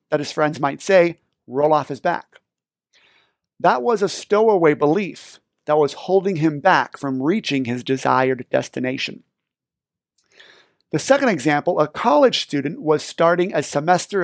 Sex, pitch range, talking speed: male, 145-195 Hz, 145 wpm